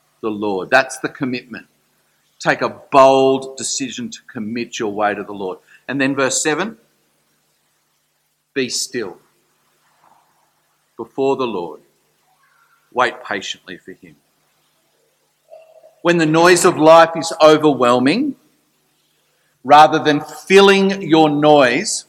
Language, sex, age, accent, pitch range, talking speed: English, male, 50-69, Australian, 130-185 Hz, 110 wpm